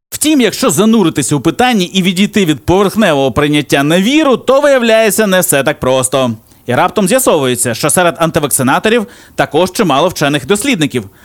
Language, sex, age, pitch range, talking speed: Ukrainian, male, 30-49, 130-190 Hz, 150 wpm